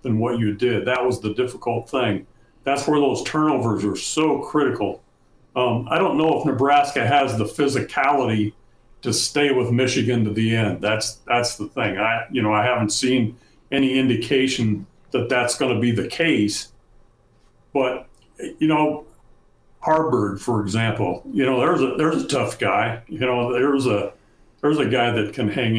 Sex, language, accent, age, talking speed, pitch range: male, English, American, 60-79, 175 wpm, 115-145 Hz